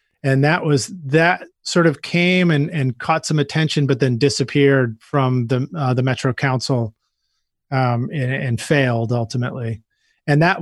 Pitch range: 120-160 Hz